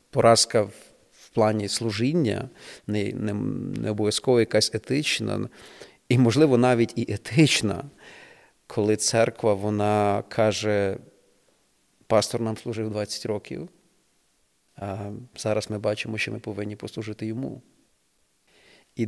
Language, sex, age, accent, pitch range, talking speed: Ukrainian, male, 40-59, native, 110-125 Hz, 105 wpm